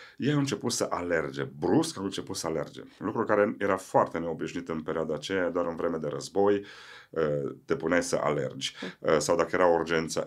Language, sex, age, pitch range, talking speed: Romanian, male, 30-49, 85-115 Hz, 180 wpm